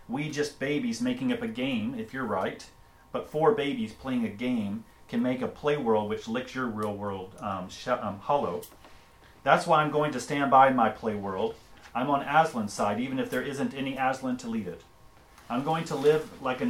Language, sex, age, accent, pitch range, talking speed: English, male, 40-59, American, 110-155 Hz, 210 wpm